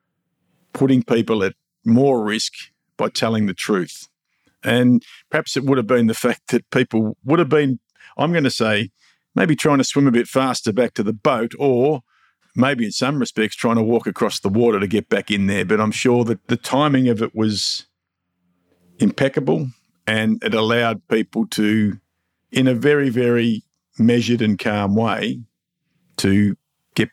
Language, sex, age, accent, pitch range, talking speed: English, male, 50-69, Australian, 105-130 Hz, 175 wpm